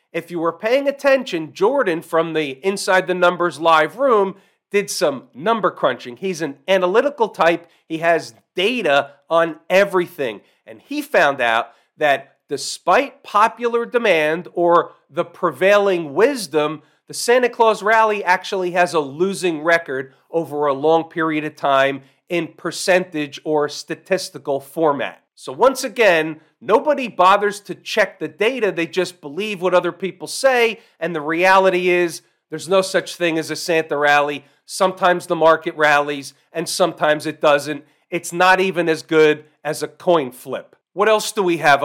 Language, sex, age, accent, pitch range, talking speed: English, male, 40-59, American, 155-200 Hz, 155 wpm